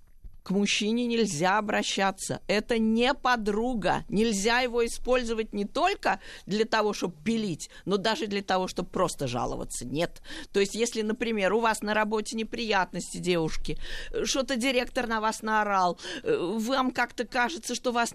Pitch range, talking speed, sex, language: 215-300 Hz, 145 wpm, female, Russian